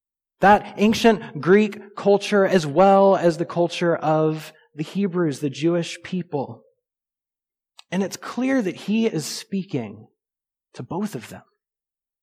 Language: English